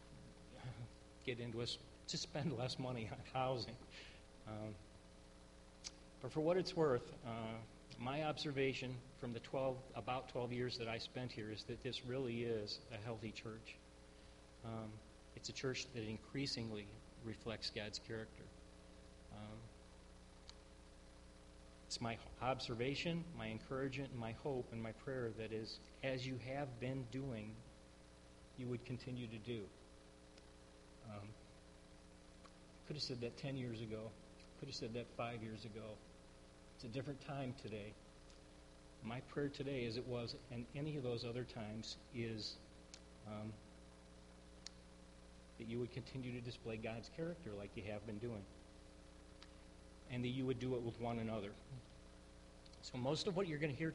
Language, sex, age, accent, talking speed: English, male, 40-59, American, 150 wpm